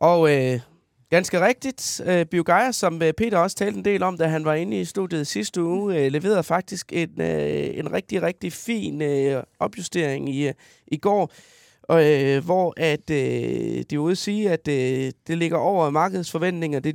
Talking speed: 160 wpm